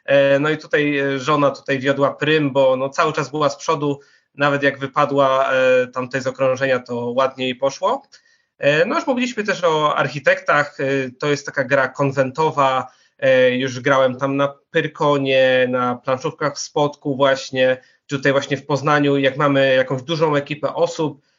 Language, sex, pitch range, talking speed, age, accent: Polish, male, 130-150 Hz, 155 wpm, 20-39, native